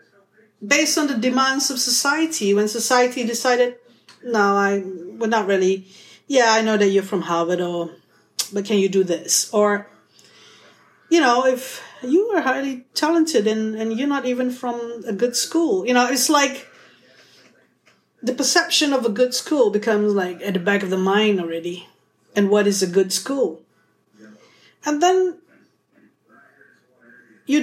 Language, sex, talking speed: English, female, 155 wpm